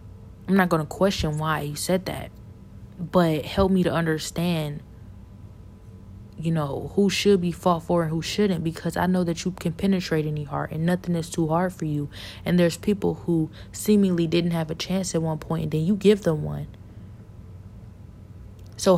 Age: 20-39